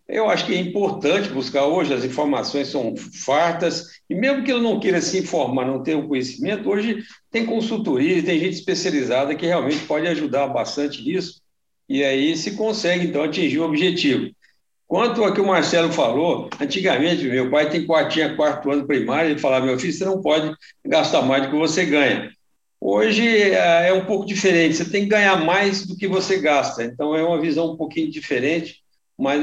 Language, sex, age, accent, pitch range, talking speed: Portuguese, male, 60-79, Brazilian, 140-190 Hz, 185 wpm